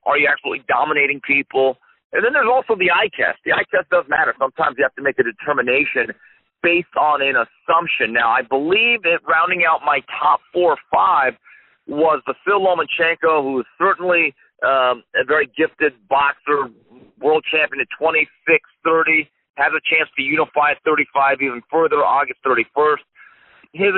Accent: American